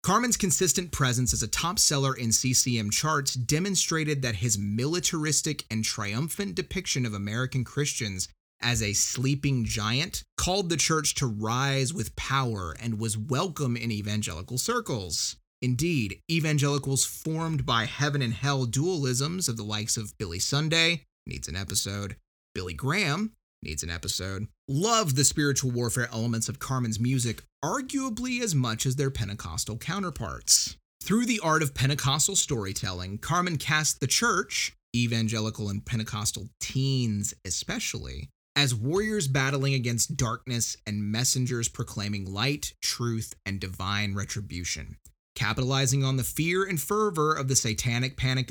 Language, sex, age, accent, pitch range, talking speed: English, male, 30-49, American, 110-145 Hz, 140 wpm